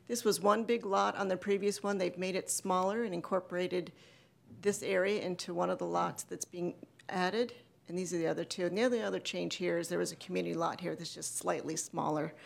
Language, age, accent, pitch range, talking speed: English, 40-59, American, 180-205 Hz, 230 wpm